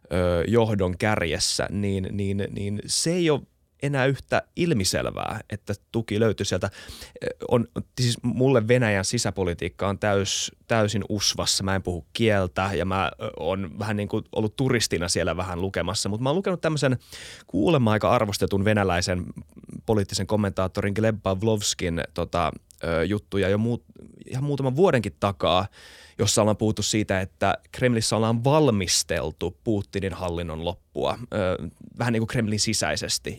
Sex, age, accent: male, 20-39, native